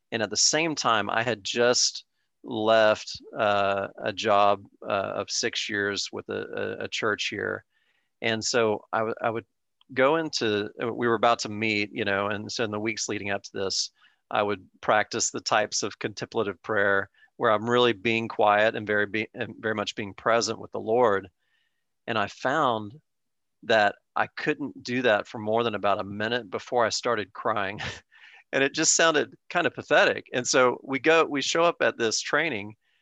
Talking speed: 190 wpm